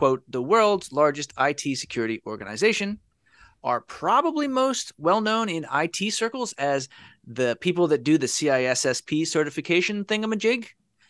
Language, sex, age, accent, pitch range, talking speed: English, male, 30-49, American, 125-200 Hz, 125 wpm